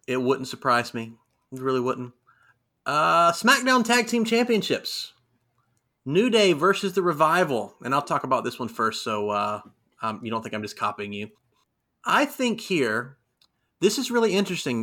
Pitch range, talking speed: 115-150 Hz, 165 wpm